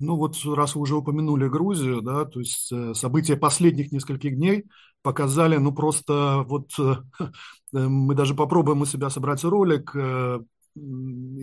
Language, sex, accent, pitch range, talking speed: Russian, male, native, 130-160 Hz, 160 wpm